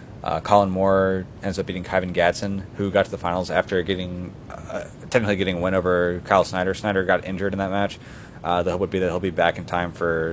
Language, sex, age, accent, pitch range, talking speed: English, male, 30-49, American, 90-100 Hz, 240 wpm